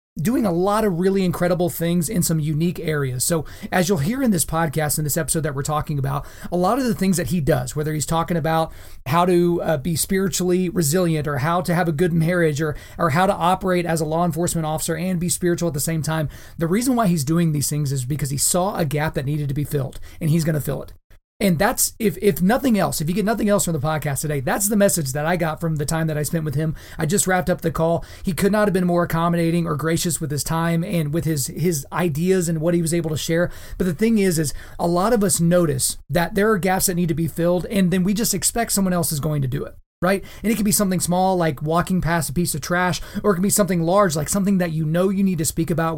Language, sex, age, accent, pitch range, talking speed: English, male, 30-49, American, 155-185 Hz, 275 wpm